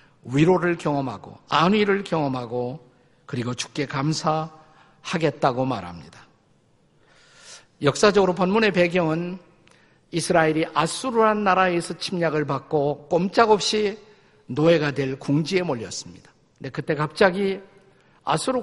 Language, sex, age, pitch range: Korean, male, 50-69, 140-185 Hz